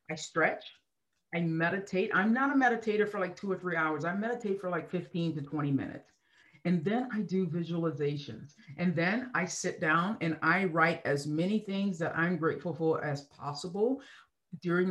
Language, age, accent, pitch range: English, 40-59, American, 155-205 Hz